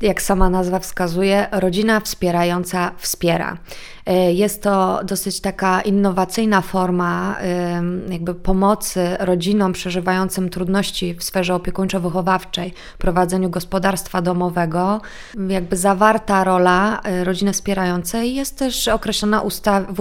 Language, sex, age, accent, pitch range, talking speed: Polish, female, 20-39, native, 185-205 Hz, 100 wpm